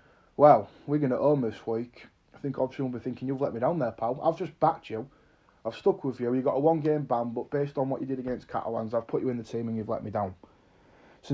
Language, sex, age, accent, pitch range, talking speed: English, male, 20-39, British, 115-140 Hz, 270 wpm